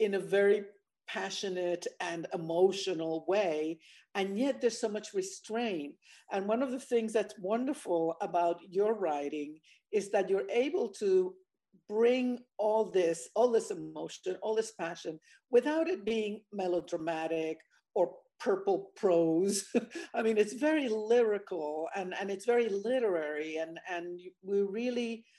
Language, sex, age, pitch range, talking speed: English, female, 50-69, 175-235 Hz, 135 wpm